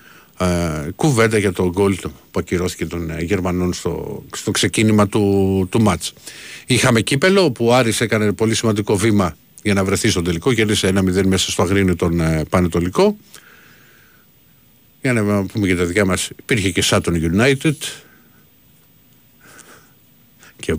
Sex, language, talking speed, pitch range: male, Greek, 140 wpm, 90-115 Hz